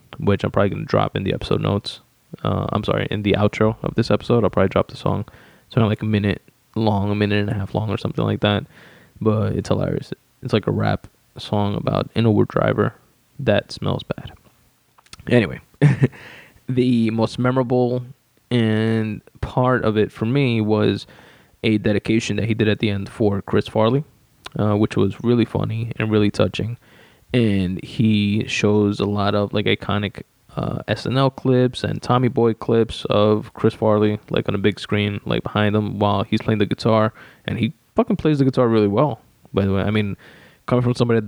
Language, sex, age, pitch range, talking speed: English, male, 20-39, 100-120 Hz, 195 wpm